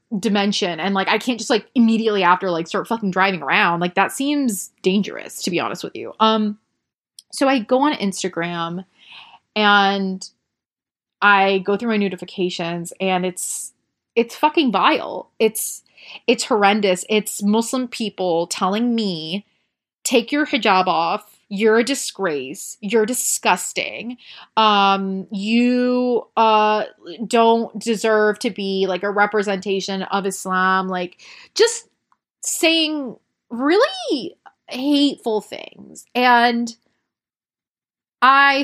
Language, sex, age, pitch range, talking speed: English, female, 20-39, 190-240 Hz, 120 wpm